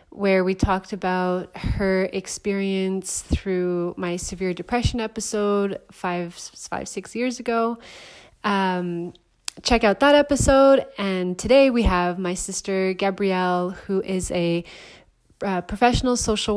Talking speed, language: 125 wpm, English